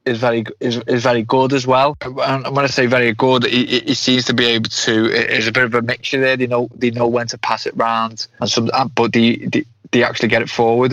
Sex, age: male, 20-39